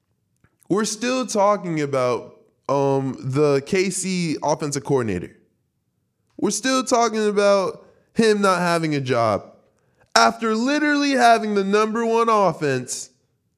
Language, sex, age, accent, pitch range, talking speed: English, male, 20-39, American, 140-220 Hz, 110 wpm